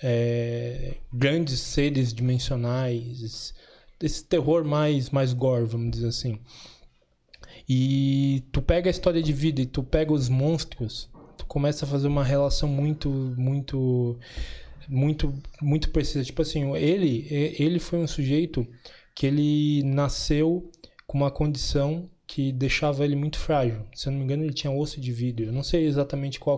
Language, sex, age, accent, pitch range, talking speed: Portuguese, male, 20-39, Brazilian, 130-155 Hz, 155 wpm